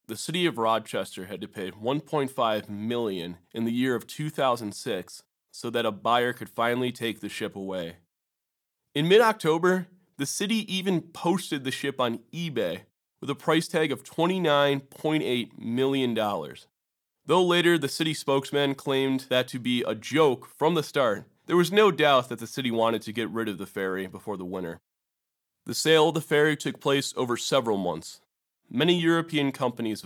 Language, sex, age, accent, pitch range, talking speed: English, male, 30-49, American, 115-150 Hz, 170 wpm